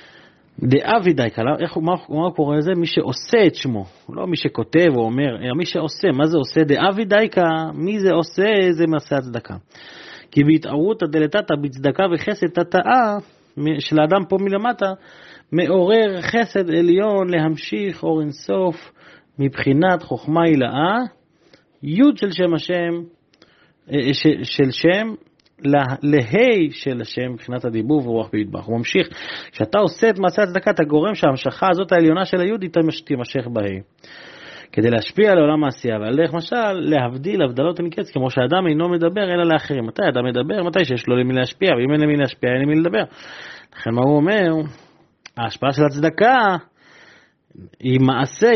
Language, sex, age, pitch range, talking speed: Hebrew, male, 30-49, 130-180 Hz, 150 wpm